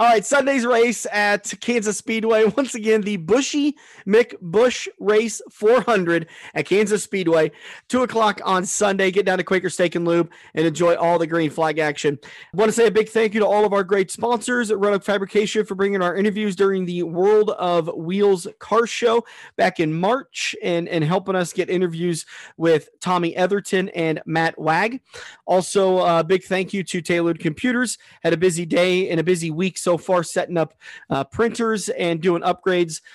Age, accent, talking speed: 30-49, American, 185 wpm